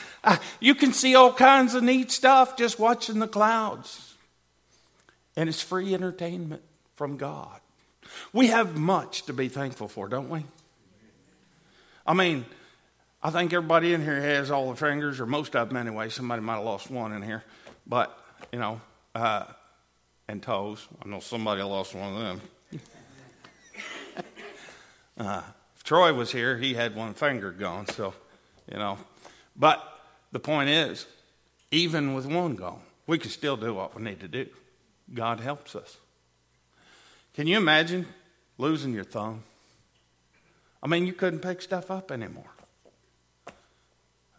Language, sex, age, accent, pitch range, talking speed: English, male, 50-69, American, 105-170 Hz, 150 wpm